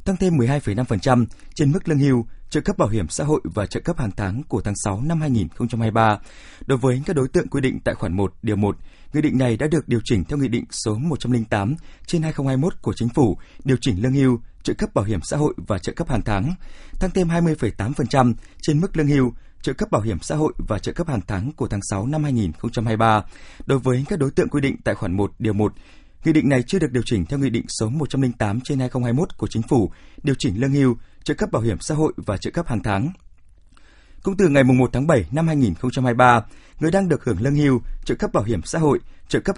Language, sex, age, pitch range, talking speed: Vietnamese, male, 20-39, 110-150 Hz, 235 wpm